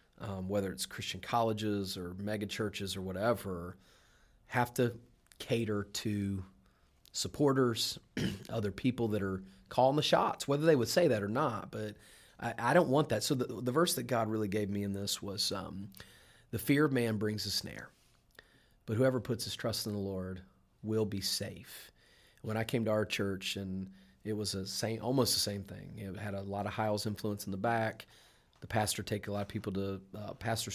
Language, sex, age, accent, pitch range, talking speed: English, male, 30-49, American, 100-115 Hz, 195 wpm